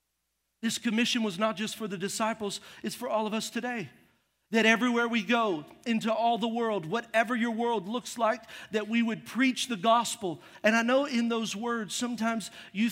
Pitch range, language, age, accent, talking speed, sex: 210-240 Hz, English, 40-59, American, 190 wpm, male